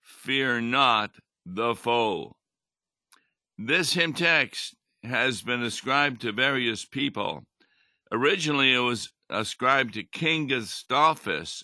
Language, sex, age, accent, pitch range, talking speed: English, male, 60-79, American, 105-130 Hz, 105 wpm